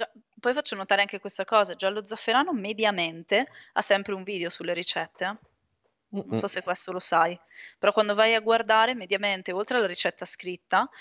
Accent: native